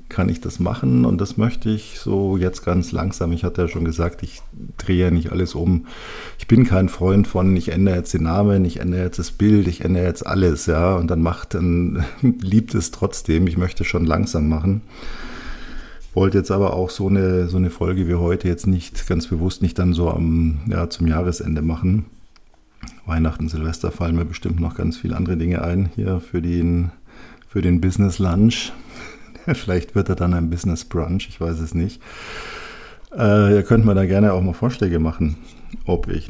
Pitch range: 85-100 Hz